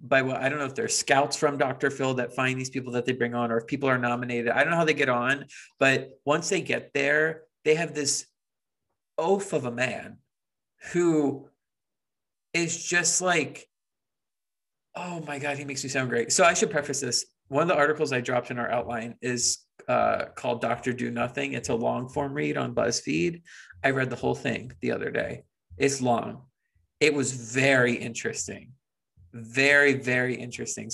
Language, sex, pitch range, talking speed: English, male, 120-145 Hz, 190 wpm